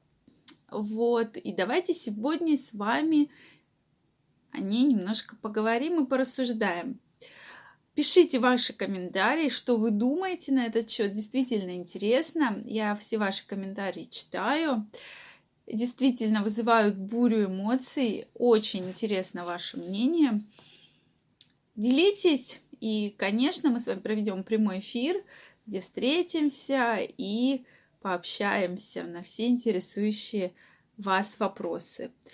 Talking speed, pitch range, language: 100 wpm, 210-260 Hz, Russian